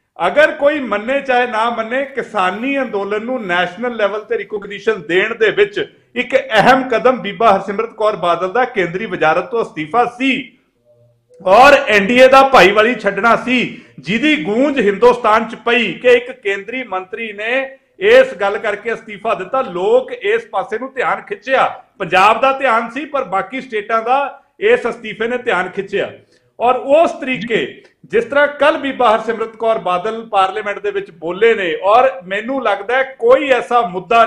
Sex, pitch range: male, 205-260 Hz